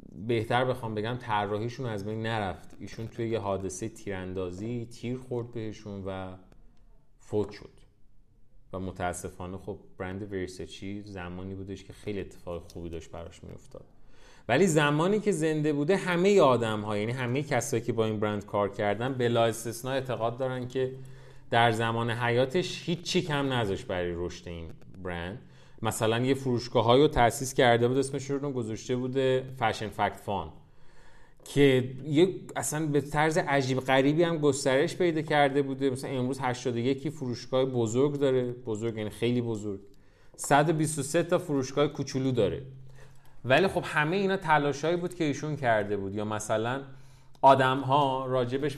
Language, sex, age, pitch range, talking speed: Persian, male, 30-49, 105-140 Hz, 150 wpm